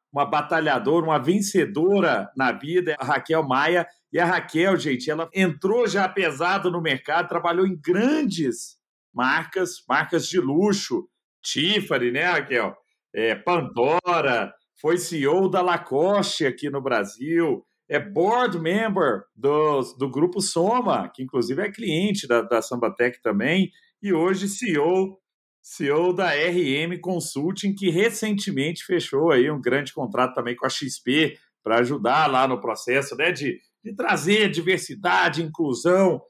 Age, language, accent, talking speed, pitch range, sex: 50-69, Portuguese, Brazilian, 135 wpm, 145-190 Hz, male